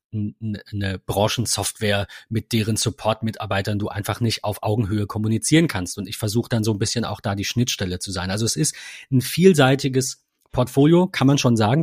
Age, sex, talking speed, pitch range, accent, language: 40-59, male, 180 wpm, 110-135 Hz, German, German